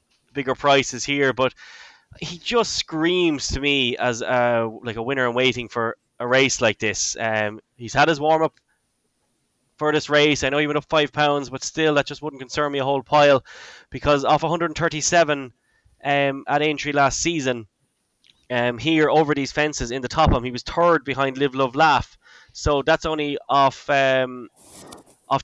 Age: 10-29